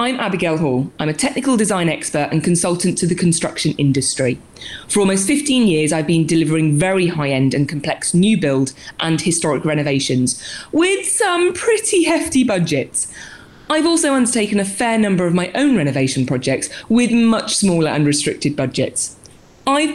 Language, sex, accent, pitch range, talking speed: English, female, British, 150-220 Hz, 160 wpm